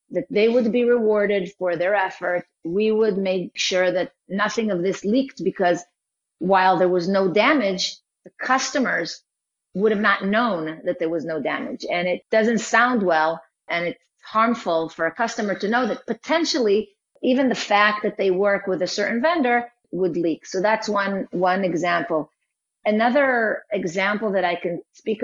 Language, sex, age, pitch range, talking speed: English, female, 40-59, 175-220 Hz, 170 wpm